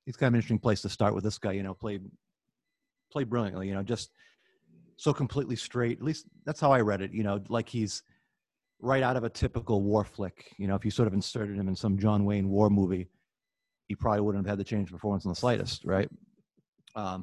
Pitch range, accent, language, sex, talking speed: 100-120 Hz, American, English, male, 235 wpm